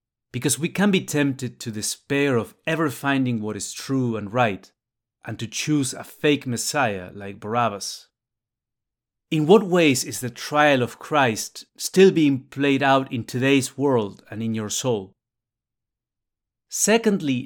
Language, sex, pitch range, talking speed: English, male, 115-150 Hz, 150 wpm